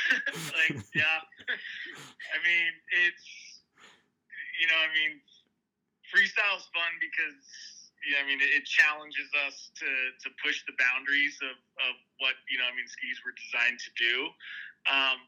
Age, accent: 20-39, American